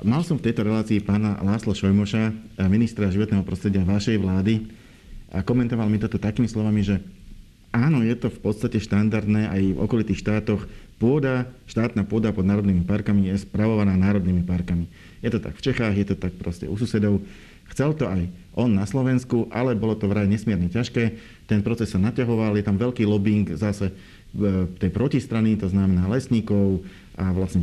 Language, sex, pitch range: Slovak, male, 100-115 Hz